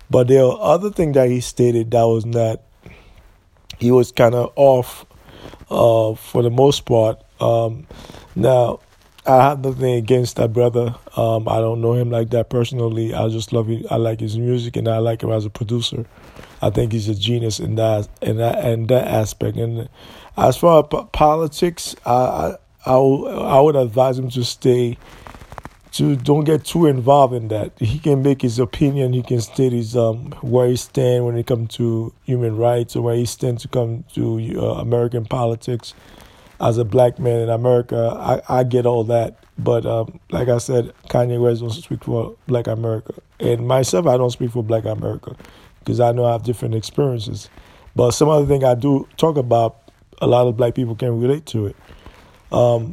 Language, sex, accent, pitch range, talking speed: English, male, American, 115-125 Hz, 190 wpm